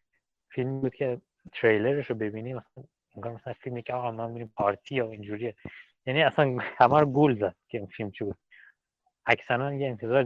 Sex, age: male, 30-49